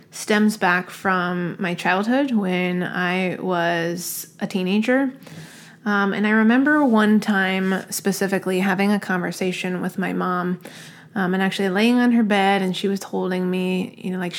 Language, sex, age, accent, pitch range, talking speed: English, female, 20-39, American, 185-205 Hz, 160 wpm